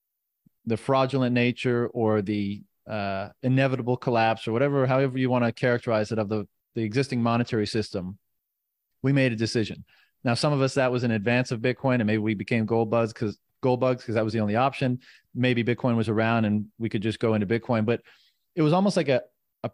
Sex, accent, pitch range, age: male, American, 115-135 Hz, 30-49